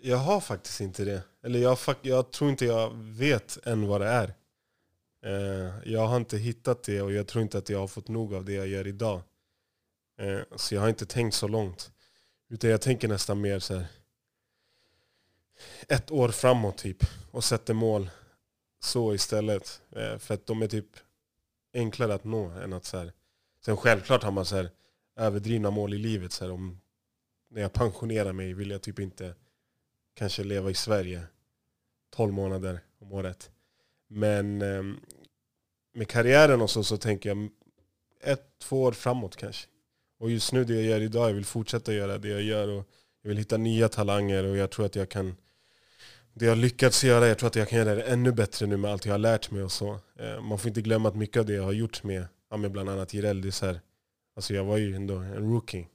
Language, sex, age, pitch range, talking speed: Swedish, male, 20-39, 100-115 Hz, 200 wpm